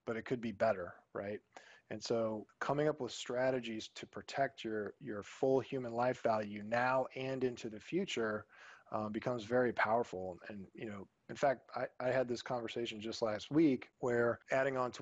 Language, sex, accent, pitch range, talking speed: English, male, American, 110-130 Hz, 185 wpm